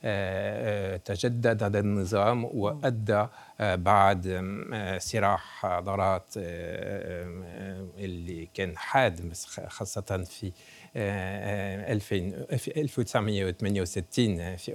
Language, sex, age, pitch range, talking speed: Arabic, male, 60-79, 100-130 Hz, 55 wpm